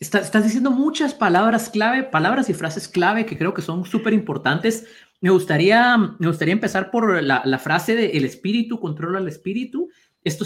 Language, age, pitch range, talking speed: Spanish, 30-49, 160-220 Hz, 185 wpm